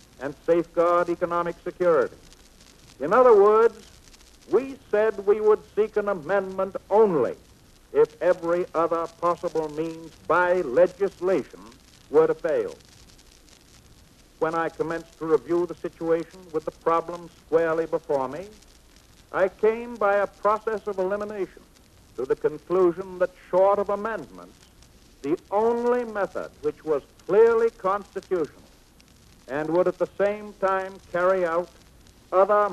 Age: 60-79